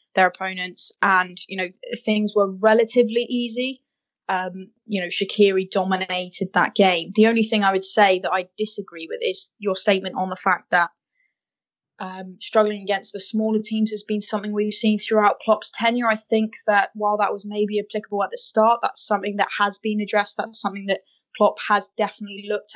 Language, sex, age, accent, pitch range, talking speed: English, female, 20-39, British, 190-220 Hz, 185 wpm